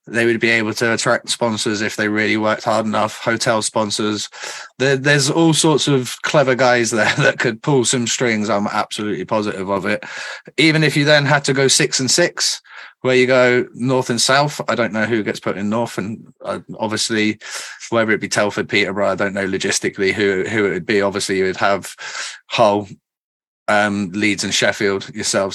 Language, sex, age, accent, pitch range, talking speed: English, male, 30-49, British, 110-150 Hz, 195 wpm